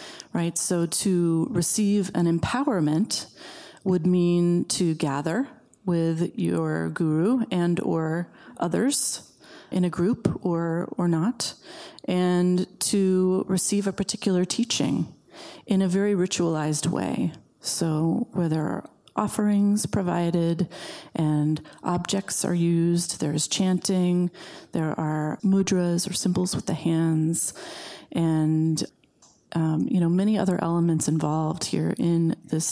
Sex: female